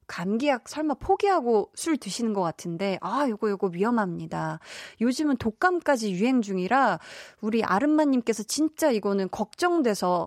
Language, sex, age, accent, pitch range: Korean, female, 20-39, native, 195-290 Hz